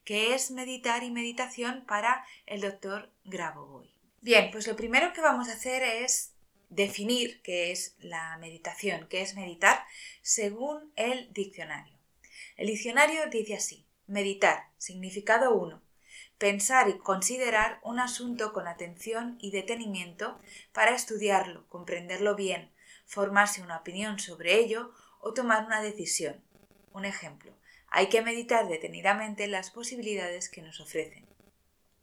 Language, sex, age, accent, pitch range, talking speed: Spanish, female, 20-39, Spanish, 185-230 Hz, 130 wpm